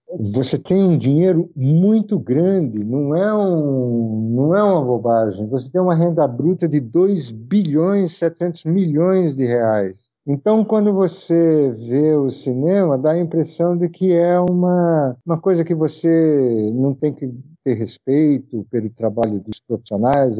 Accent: Brazilian